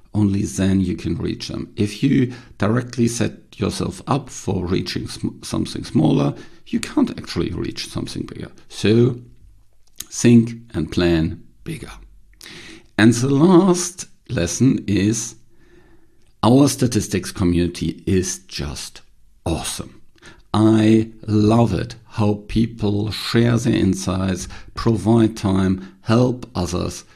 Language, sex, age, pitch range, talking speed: English, male, 50-69, 95-115 Hz, 110 wpm